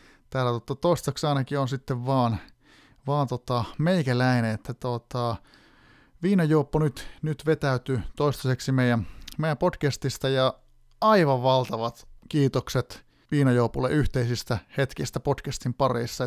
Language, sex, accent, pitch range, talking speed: Finnish, male, native, 120-145 Hz, 105 wpm